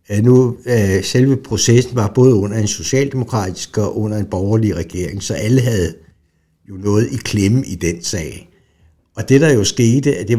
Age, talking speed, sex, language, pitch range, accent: 60-79, 175 wpm, male, Danish, 90-115 Hz, native